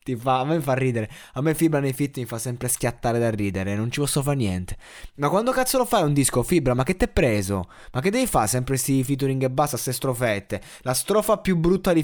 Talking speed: 255 wpm